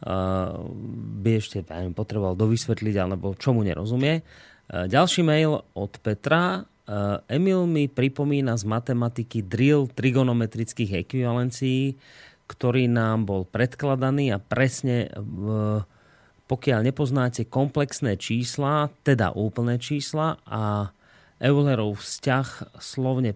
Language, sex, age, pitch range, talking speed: Slovak, male, 30-49, 110-130 Hz, 95 wpm